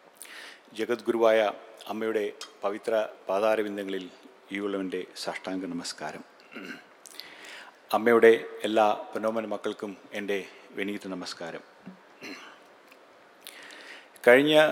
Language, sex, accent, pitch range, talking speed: English, male, Indian, 105-125 Hz, 65 wpm